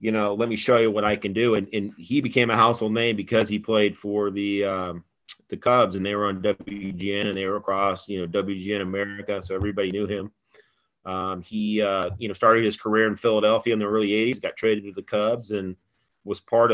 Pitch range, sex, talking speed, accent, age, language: 95-110 Hz, male, 230 wpm, American, 30-49, English